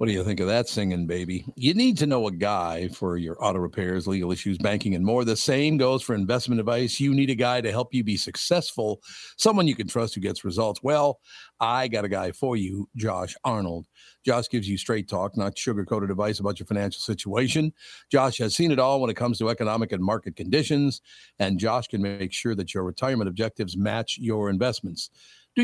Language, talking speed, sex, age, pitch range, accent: English, 215 wpm, male, 50-69, 100-125 Hz, American